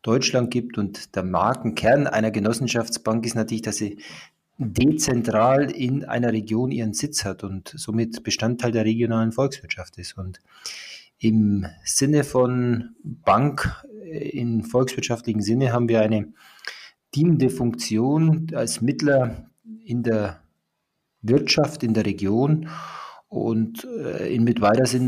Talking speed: 120 wpm